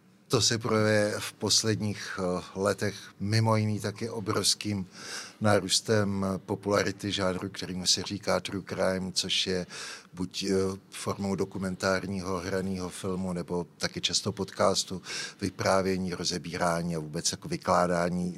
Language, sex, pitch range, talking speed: Czech, male, 95-110 Hz, 110 wpm